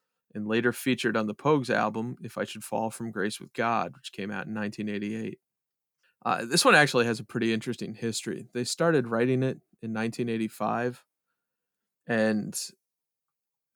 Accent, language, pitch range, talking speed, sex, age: American, English, 110-125 Hz, 155 wpm, male, 30-49